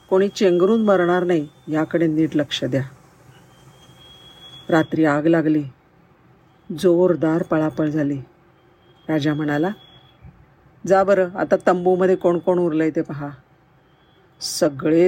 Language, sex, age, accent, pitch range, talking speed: Marathi, female, 50-69, native, 155-185 Hz, 90 wpm